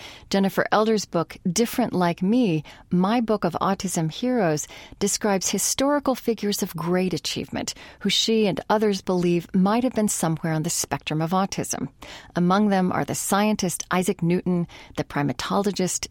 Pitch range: 170-215 Hz